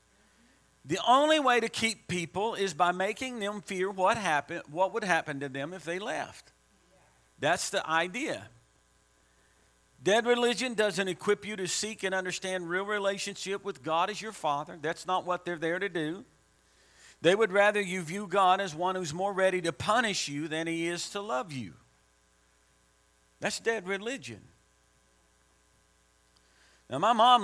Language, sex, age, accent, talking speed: English, male, 50-69, American, 160 wpm